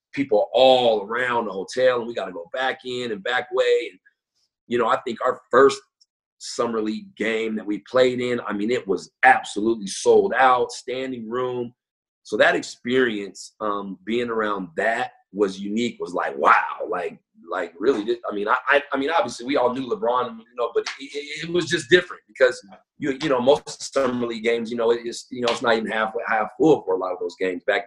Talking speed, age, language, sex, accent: 210 wpm, 40-59, English, male, American